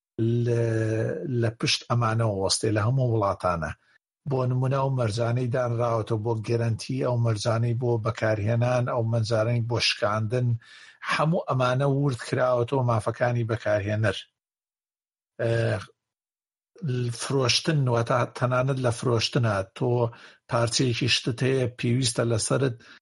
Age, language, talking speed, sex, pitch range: 50-69, Arabic, 105 wpm, male, 115-135 Hz